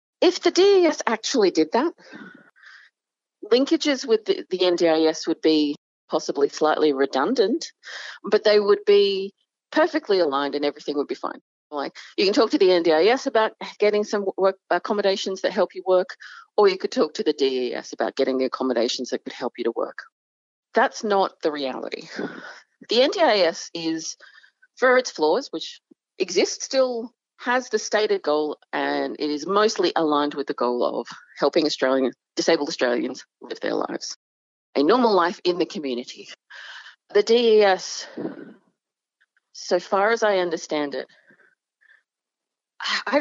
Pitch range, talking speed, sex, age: 160-260 Hz, 150 wpm, female, 40-59